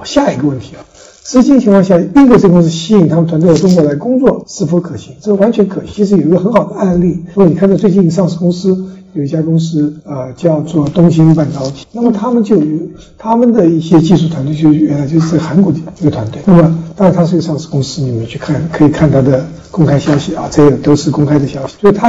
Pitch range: 150-195 Hz